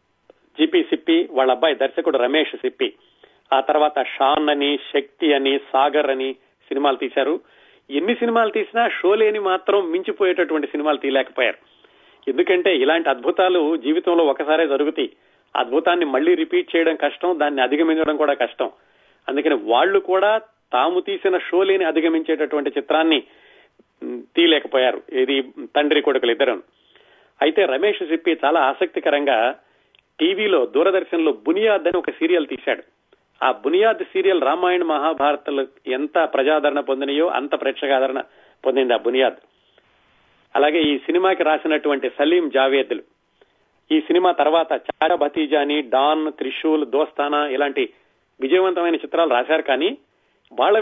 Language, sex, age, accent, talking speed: Telugu, male, 40-59, native, 120 wpm